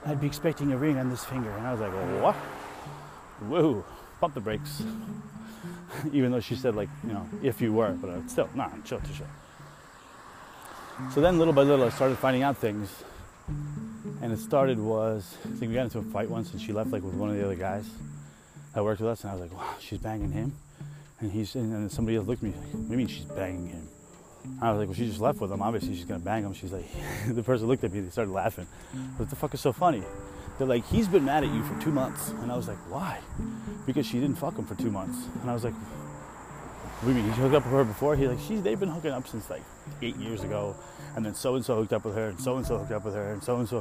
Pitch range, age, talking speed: 105-145 Hz, 30-49, 265 wpm